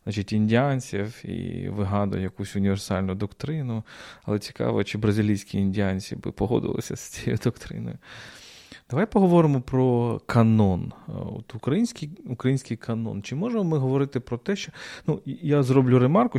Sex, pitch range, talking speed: male, 105-130 Hz, 130 wpm